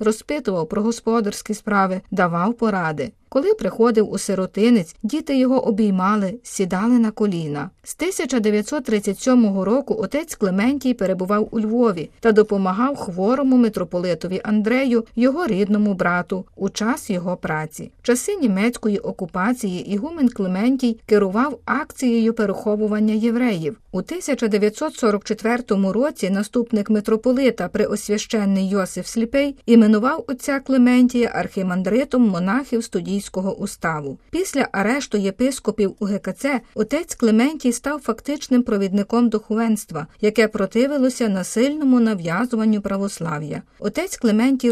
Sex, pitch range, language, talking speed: female, 195-250 Hz, Ukrainian, 105 wpm